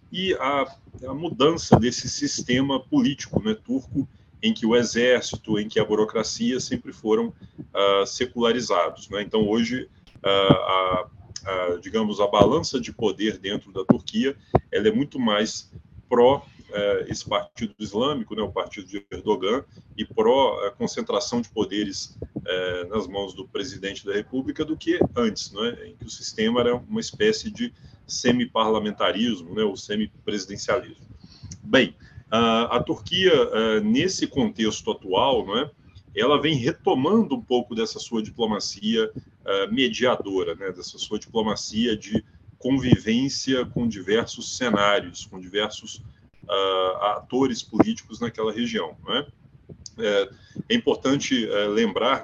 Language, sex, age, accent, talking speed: Portuguese, male, 40-59, Brazilian, 125 wpm